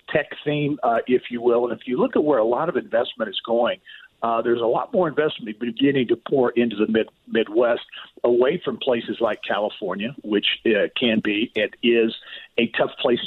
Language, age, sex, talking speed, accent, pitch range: English, 50-69, male, 205 wpm, American, 110-130 Hz